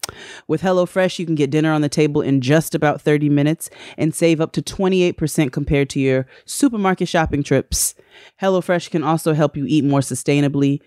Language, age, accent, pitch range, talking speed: English, 30-49, American, 130-155 Hz, 180 wpm